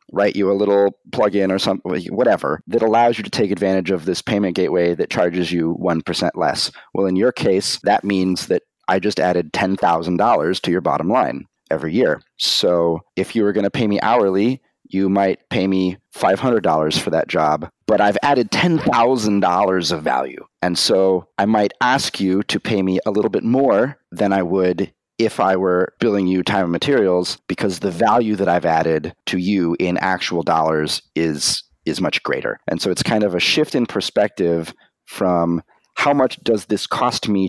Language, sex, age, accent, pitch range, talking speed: English, male, 30-49, American, 90-100 Hz, 190 wpm